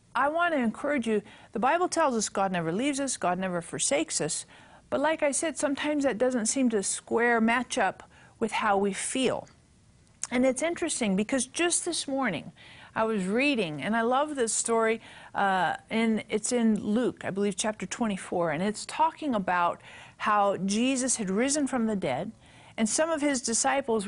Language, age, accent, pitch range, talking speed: English, 50-69, American, 200-265 Hz, 180 wpm